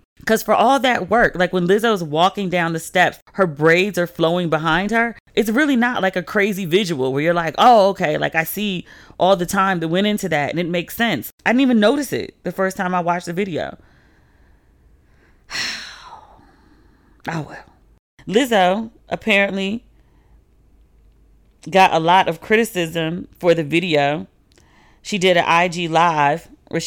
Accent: American